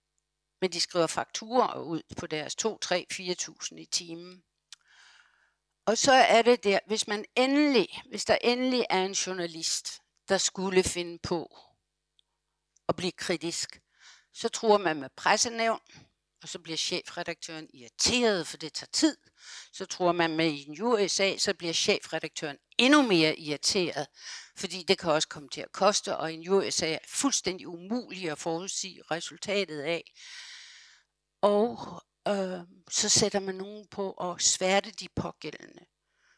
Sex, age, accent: female, 60-79, native